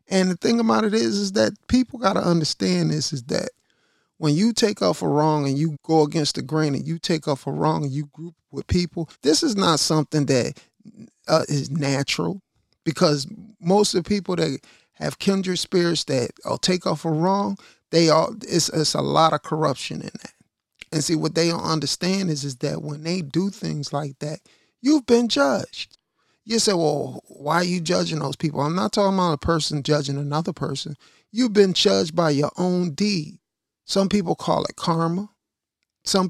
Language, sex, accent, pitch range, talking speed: English, male, American, 150-195 Hz, 200 wpm